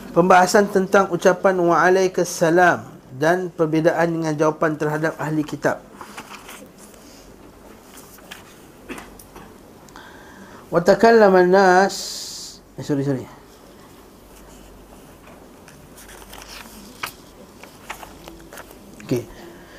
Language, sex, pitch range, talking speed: Malay, male, 145-185 Hz, 50 wpm